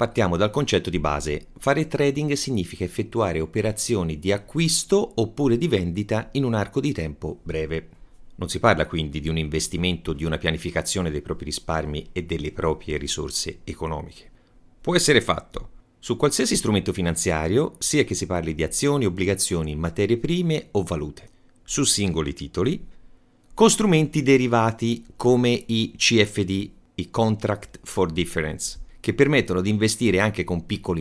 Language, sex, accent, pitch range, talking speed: Italian, male, native, 85-135 Hz, 150 wpm